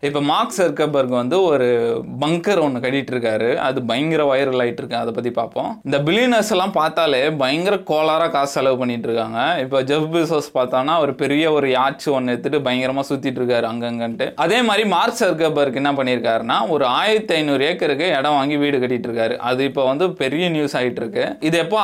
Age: 20-39